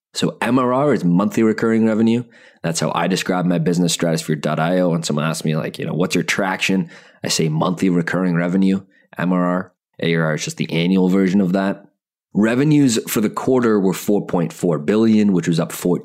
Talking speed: 175 wpm